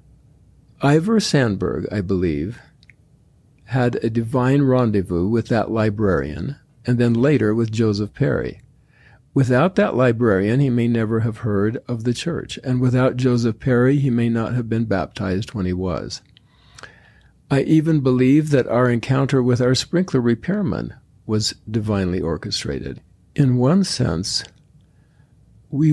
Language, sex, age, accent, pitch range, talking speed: English, male, 50-69, American, 105-130 Hz, 135 wpm